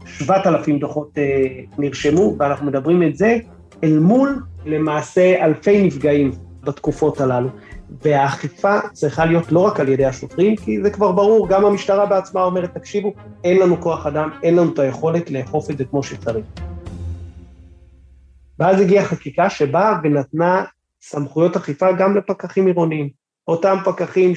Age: 30-49